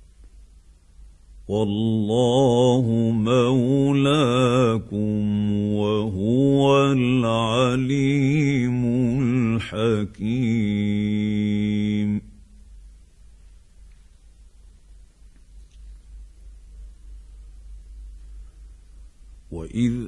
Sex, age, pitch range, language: male, 50-69, 90-140 Hz, Arabic